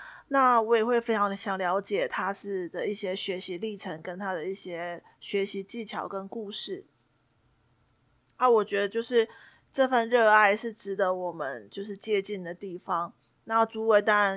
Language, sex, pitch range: Chinese, female, 195-230 Hz